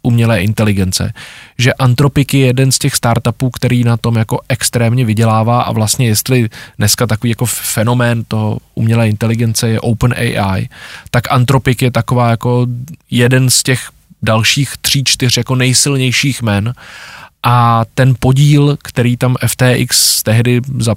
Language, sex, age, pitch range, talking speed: Czech, male, 20-39, 110-130 Hz, 145 wpm